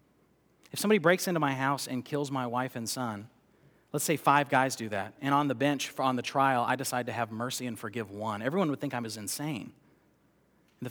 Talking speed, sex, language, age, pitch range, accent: 220 wpm, male, English, 40-59, 125-175 Hz, American